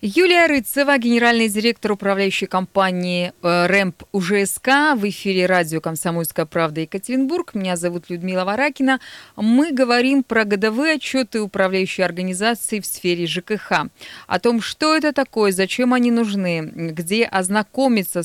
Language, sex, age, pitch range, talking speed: Russian, female, 20-39, 175-240 Hz, 125 wpm